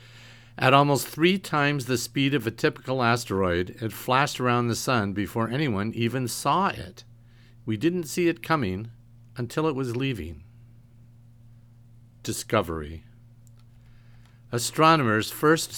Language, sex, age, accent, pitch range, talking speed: English, male, 50-69, American, 110-125 Hz, 120 wpm